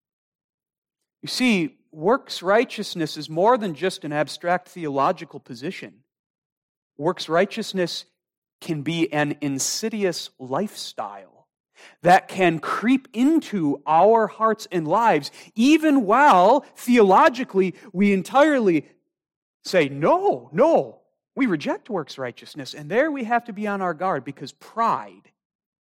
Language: English